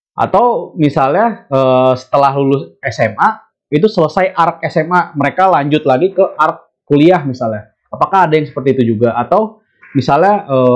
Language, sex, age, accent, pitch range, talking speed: Indonesian, male, 20-39, native, 120-160 Hz, 135 wpm